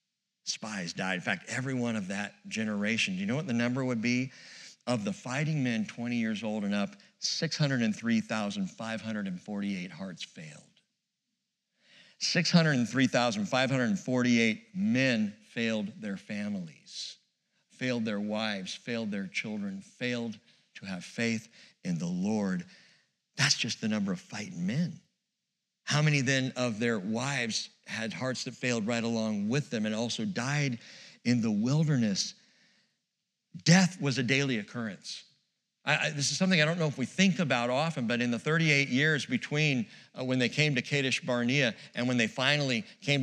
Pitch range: 120-190 Hz